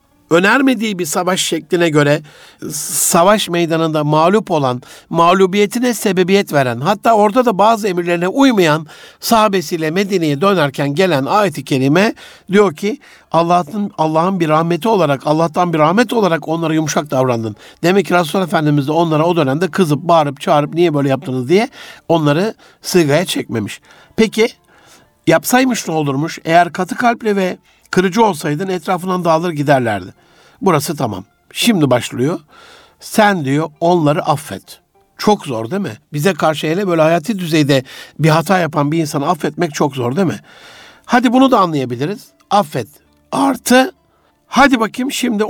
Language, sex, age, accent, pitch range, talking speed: Turkish, male, 60-79, native, 150-205 Hz, 140 wpm